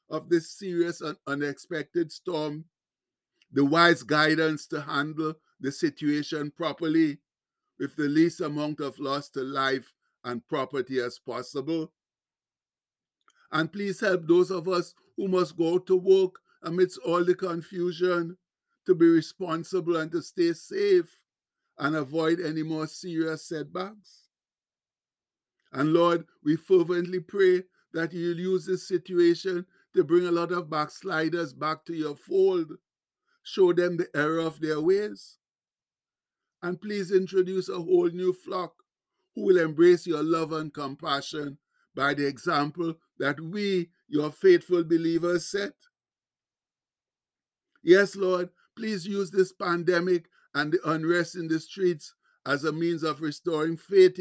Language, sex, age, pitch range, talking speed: English, male, 60-79, 155-185 Hz, 135 wpm